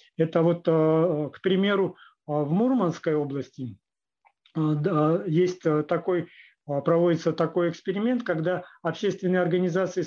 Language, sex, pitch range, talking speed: Russian, male, 155-185 Hz, 90 wpm